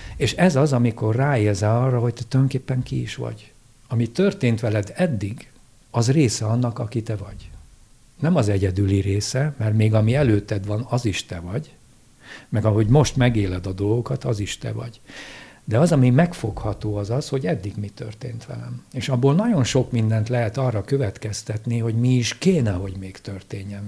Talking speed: 180 wpm